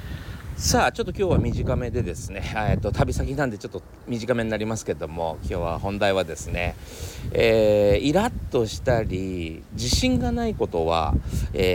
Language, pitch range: Japanese, 95-135 Hz